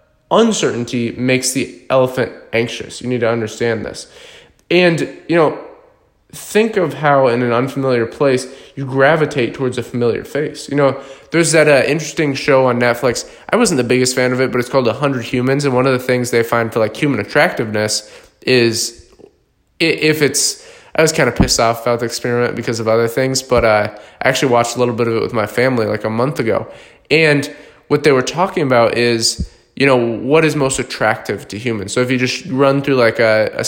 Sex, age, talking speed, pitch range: male, 20-39, 205 wpm, 120-145 Hz